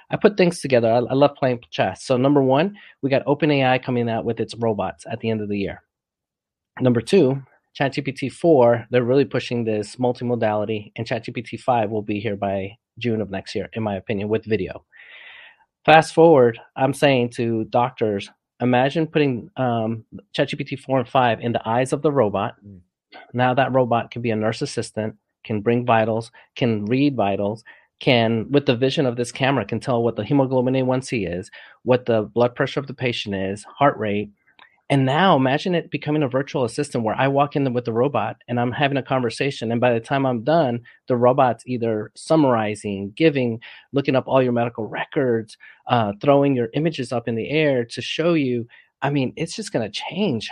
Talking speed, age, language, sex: 190 wpm, 30-49, English, male